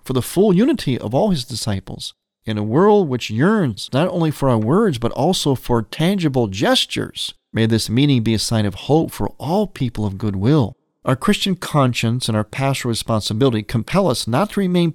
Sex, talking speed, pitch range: male, 195 wpm, 115-165 Hz